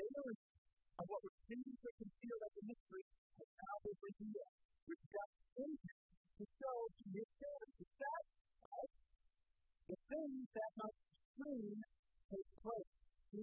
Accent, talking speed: American, 125 wpm